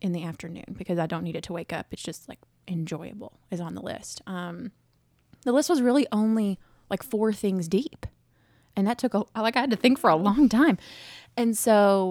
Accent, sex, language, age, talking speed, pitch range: American, female, English, 20-39, 220 wpm, 165-205 Hz